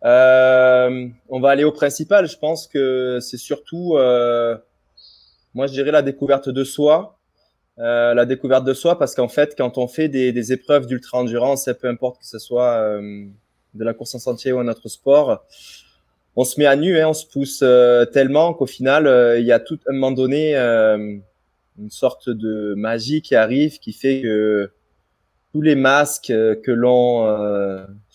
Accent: French